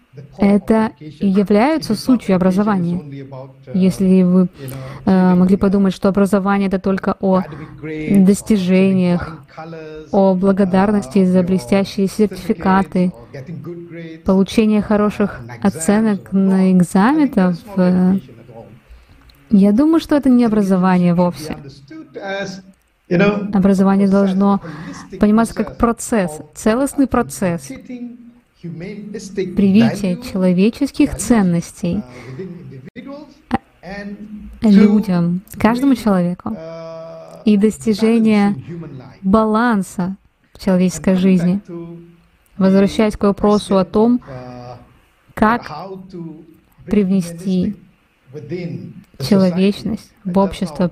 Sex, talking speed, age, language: female, 70 wpm, 20-39, Russian